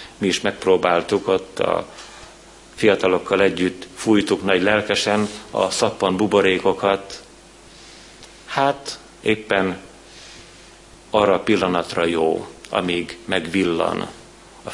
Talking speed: 90 wpm